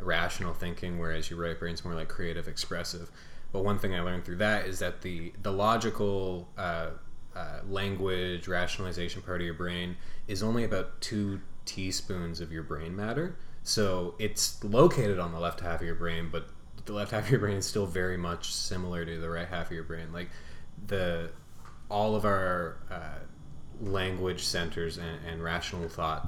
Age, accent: 20-39, American